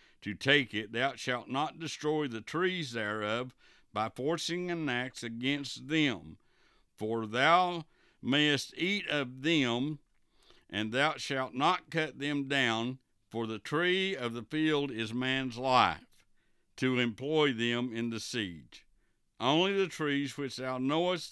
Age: 60-79